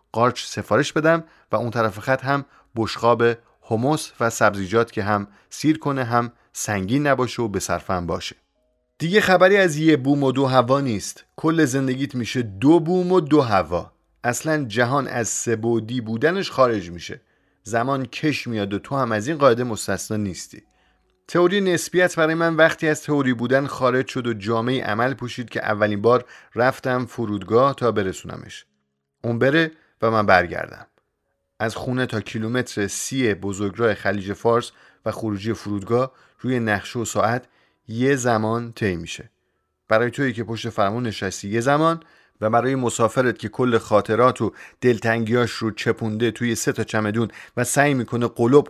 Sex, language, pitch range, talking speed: male, Persian, 105-135 Hz, 160 wpm